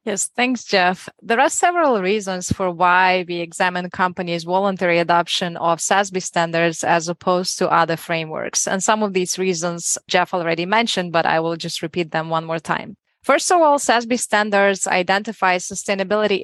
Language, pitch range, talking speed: English, 180-215 Hz, 170 wpm